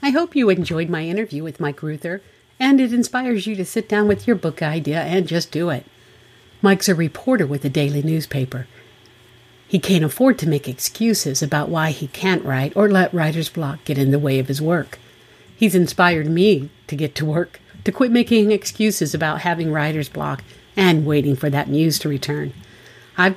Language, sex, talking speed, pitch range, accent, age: English, female, 195 wpm, 150-200 Hz, American, 50-69